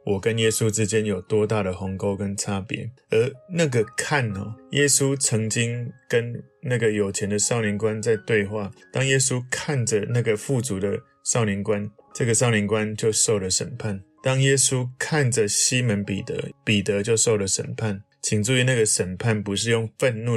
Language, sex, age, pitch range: Chinese, male, 20-39, 105-125 Hz